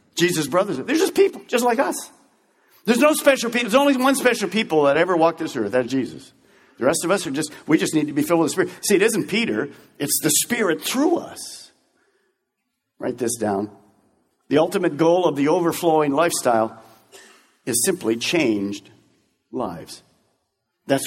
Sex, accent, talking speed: male, American, 180 wpm